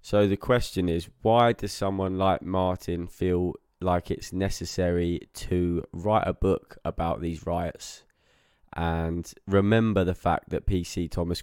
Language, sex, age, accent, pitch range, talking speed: English, male, 20-39, British, 90-100 Hz, 145 wpm